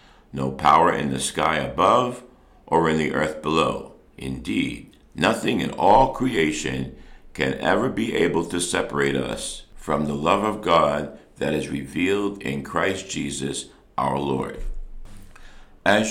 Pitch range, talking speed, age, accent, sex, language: 70-90 Hz, 140 wpm, 60-79, American, male, English